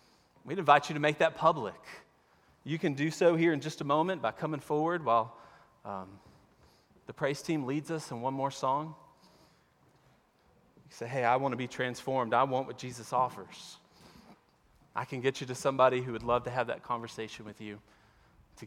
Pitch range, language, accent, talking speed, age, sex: 115-145 Hz, English, American, 190 wpm, 30-49, male